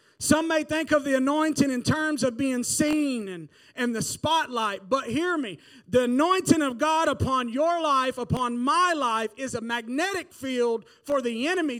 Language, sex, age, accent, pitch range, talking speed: English, male, 40-59, American, 230-305 Hz, 180 wpm